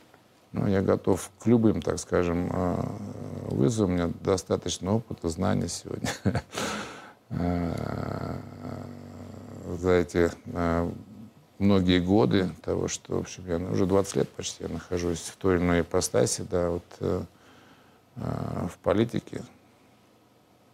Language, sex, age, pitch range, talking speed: Russian, male, 50-69, 90-110 Hz, 105 wpm